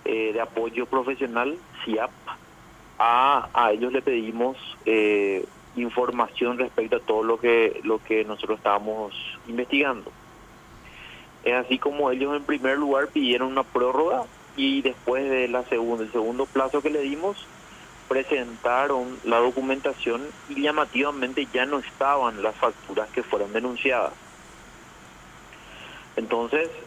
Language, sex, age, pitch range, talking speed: Spanish, male, 30-49, 115-140 Hz, 125 wpm